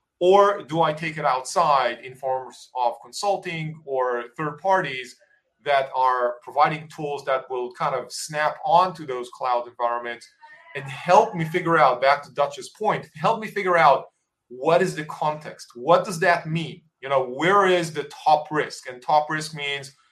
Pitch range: 140-170 Hz